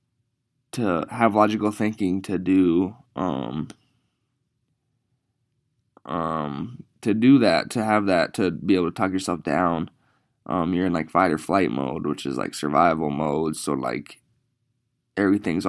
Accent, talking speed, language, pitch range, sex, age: American, 140 wpm, English, 95-120 Hz, male, 20-39